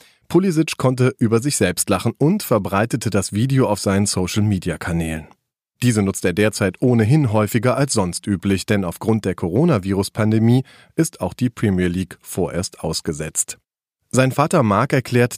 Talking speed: 145 wpm